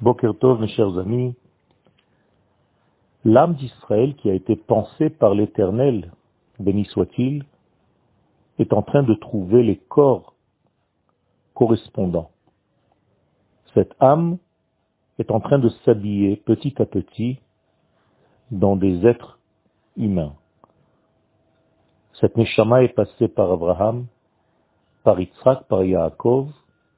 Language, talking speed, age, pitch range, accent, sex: French, 100 wpm, 50-69, 95-125 Hz, French, male